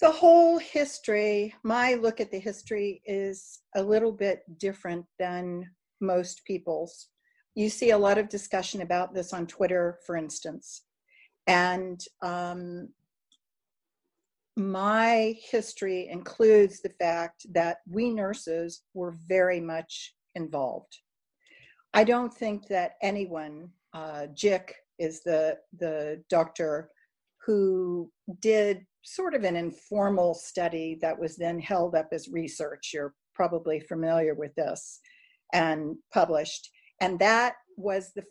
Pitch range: 165-210 Hz